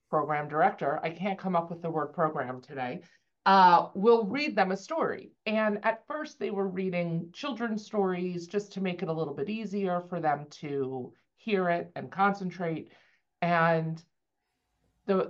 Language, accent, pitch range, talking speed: English, American, 165-210 Hz, 170 wpm